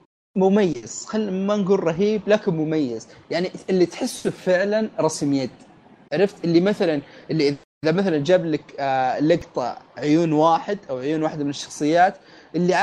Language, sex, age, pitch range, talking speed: Arabic, male, 30-49, 155-190 Hz, 145 wpm